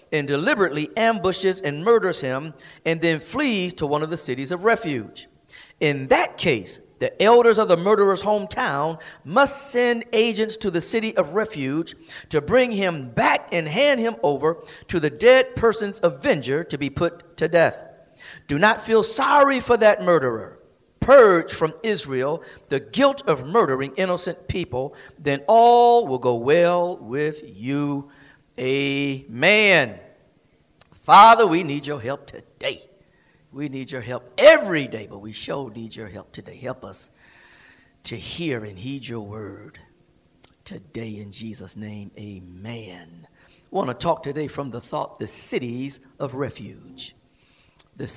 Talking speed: 150 wpm